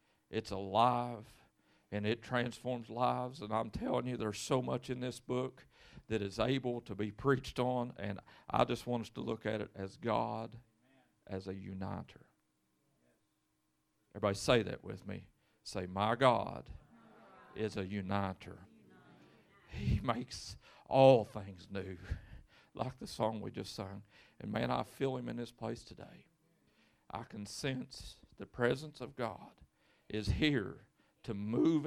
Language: English